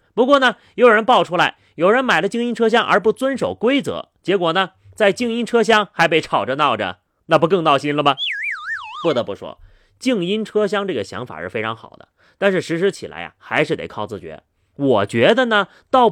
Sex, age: male, 30-49